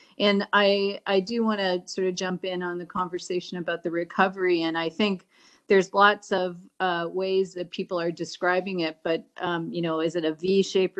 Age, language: 40-59, English